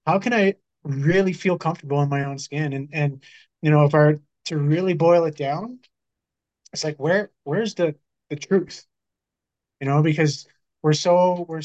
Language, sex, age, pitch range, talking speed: English, male, 20-39, 140-160 Hz, 175 wpm